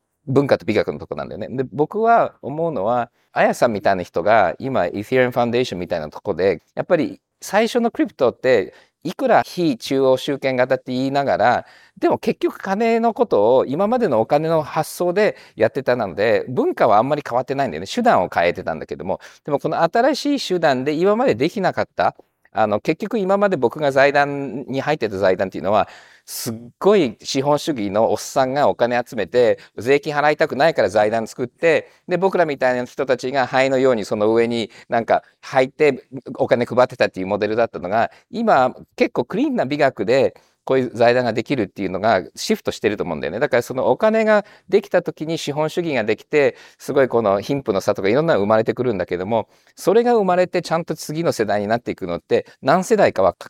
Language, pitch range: Japanese, 125-205 Hz